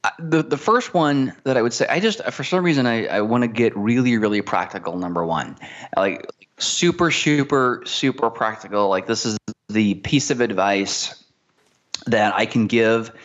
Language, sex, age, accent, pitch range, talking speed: English, male, 20-39, American, 100-130 Hz, 175 wpm